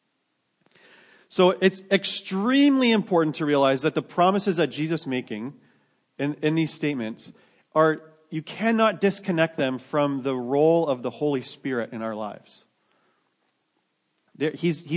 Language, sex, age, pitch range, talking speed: English, male, 40-59, 120-160 Hz, 135 wpm